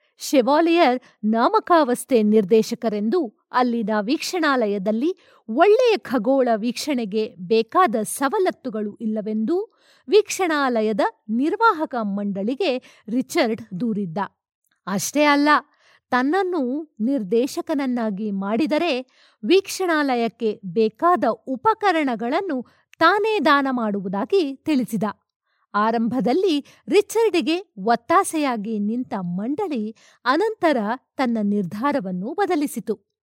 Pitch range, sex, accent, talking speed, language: 225-330 Hz, female, native, 65 wpm, Kannada